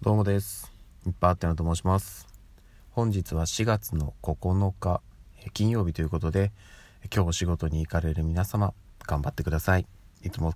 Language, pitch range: Japanese, 80-100 Hz